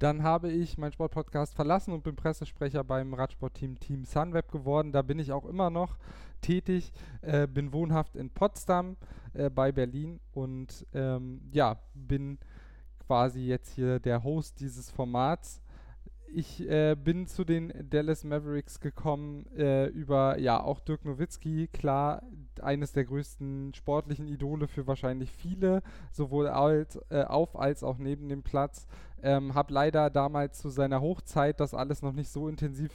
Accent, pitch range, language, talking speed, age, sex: German, 130-150 Hz, German, 155 wpm, 10-29, male